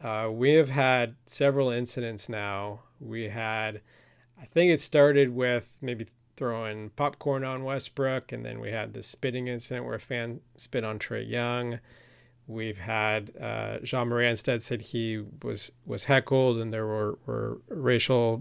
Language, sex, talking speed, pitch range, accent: English, male, 155 wpm, 115-130 Hz, American